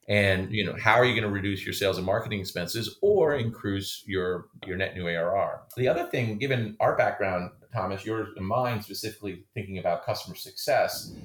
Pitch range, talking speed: 95-125 Hz, 185 wpm